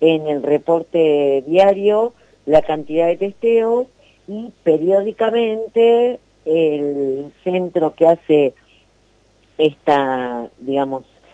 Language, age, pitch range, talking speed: Spanish, 50-69, 140-185 Hz, 85 wpm